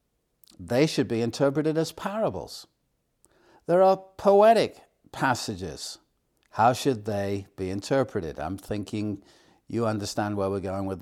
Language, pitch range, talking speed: English, 110-145 Hz, 125 wpm